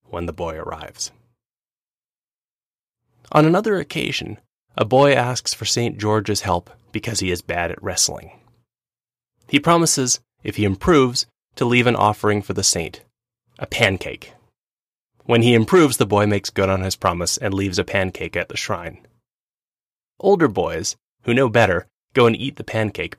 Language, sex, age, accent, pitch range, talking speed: English, male, 20-39, American, 100-125 Hz, 160 wpm